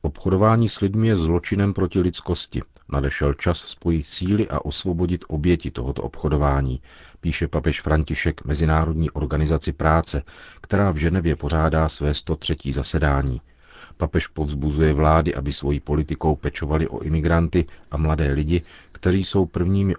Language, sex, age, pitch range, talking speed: Czech, male, 40-59, 75-85 Hz, 130 wpm